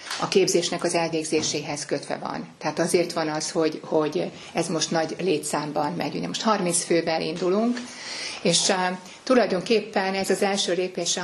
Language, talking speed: Hungarian, 155 wpm